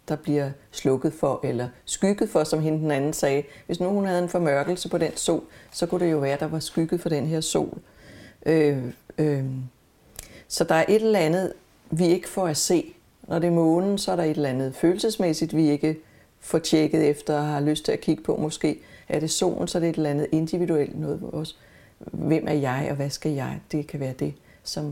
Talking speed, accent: 225 wpm, Danish